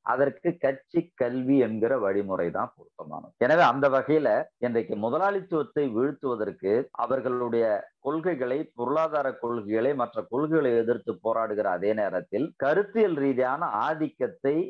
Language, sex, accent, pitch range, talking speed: Tamil, male, native, 105-140 Hz, 105 wpm